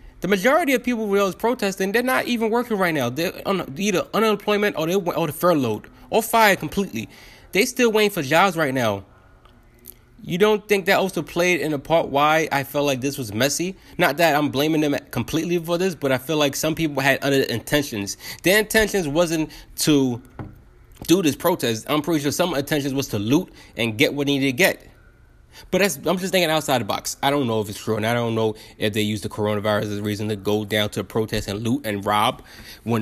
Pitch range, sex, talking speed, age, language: 110-170 Hz, male, 220 wpm, 20-39, English